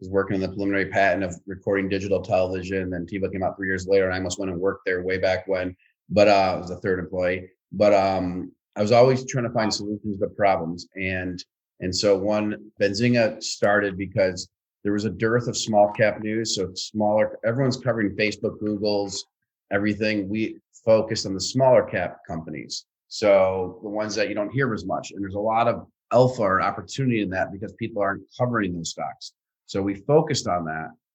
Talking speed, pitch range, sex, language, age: 200 wpm, 95-110 Hz, male, English, 30-49